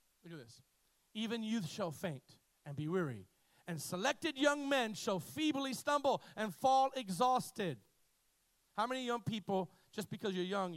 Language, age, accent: English, 40-59, American